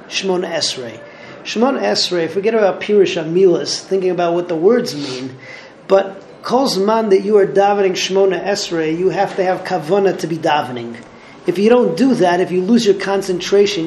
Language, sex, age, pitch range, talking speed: English, male, 40-59, 170-205 Hz, 175 wpm